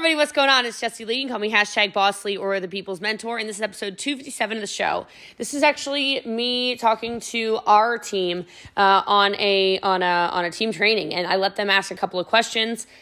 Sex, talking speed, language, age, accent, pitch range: female, 235 wpm, English, 20-39, American, 180-220 Hz